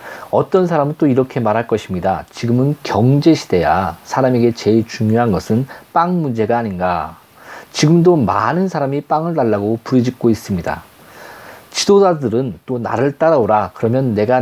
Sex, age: male, 40-59